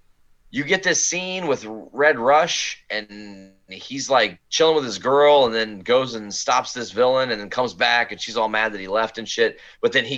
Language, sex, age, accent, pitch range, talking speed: English, male, 30-49, American, 105-130 Hz, 220 wpm